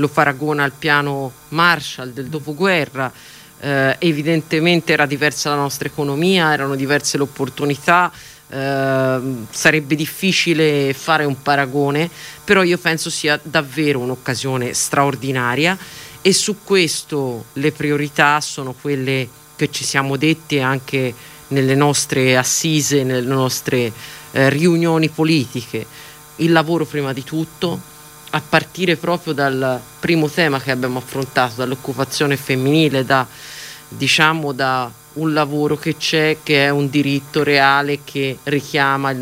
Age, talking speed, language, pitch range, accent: 40-59, 125 wpm, Italian, 135-155 Hz, native